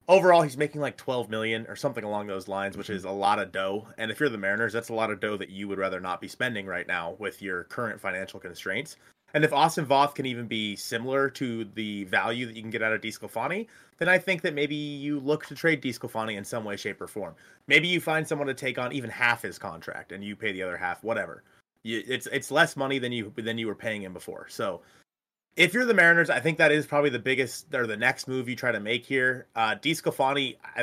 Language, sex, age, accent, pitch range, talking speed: English, male, 30-49, American, 110-150 Hz, 250 wpm